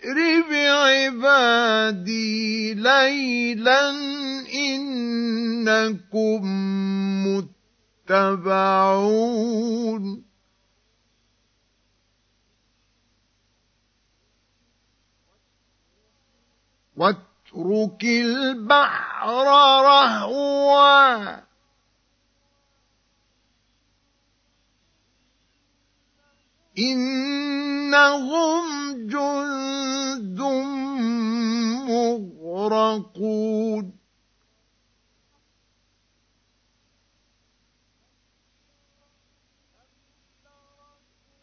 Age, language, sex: 50-69, Arabic, male